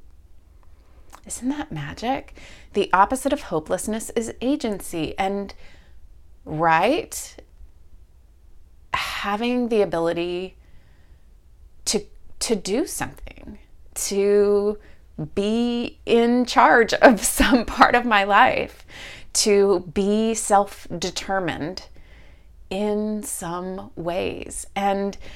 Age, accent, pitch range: 30-49, American, 130-220 Hz